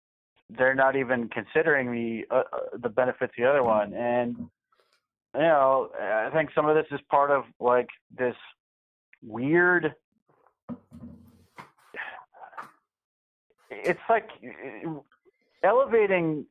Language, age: English, 40-59